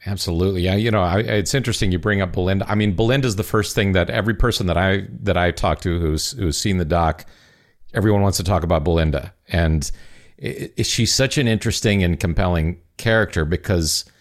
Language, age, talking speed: English, 50-69, 205 wpm